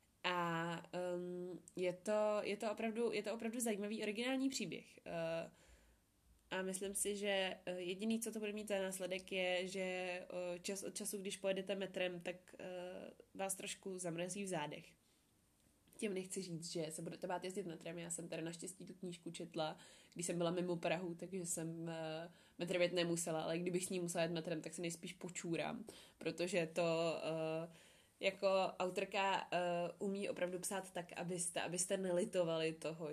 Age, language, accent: 20-39, Czech, native